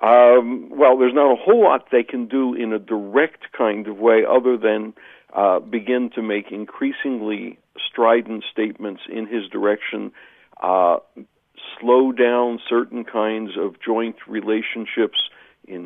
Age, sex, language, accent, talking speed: 60-79, male, English, American, 140 wpm